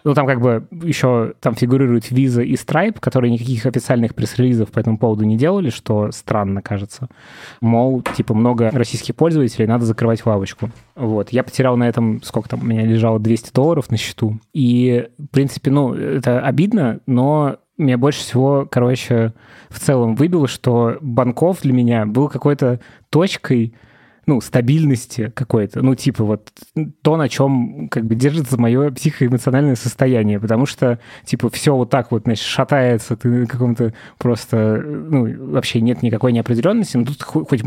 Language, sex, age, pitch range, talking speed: Russian, male, 20-39, 115-135 Hz, 160 wpm